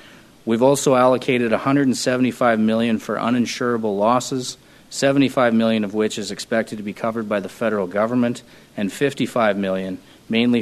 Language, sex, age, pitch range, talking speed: English, male, 40-59, 110-125 Hz, 140 wpm